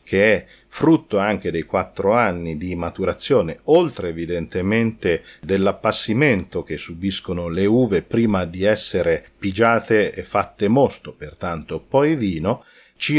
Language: Italian